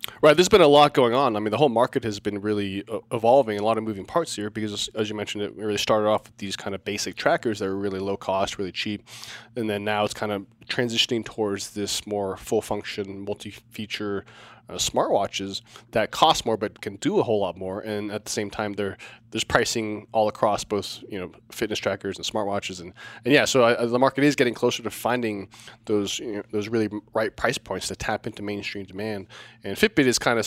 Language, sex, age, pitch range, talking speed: English, male, 20-39, 105-120 Hz, 225 wpm